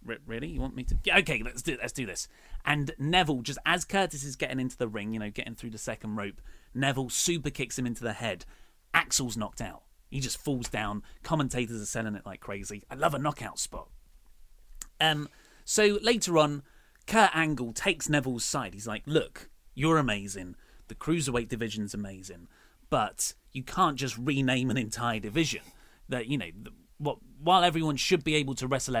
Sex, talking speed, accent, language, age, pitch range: male, 190 wpm, British, English, 30-49, 115-150 Hz